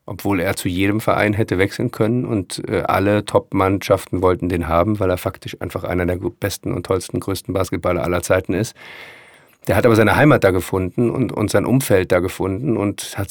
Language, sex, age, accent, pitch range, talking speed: German, male, 50-69, German, 95-120 Hz, 195 wpm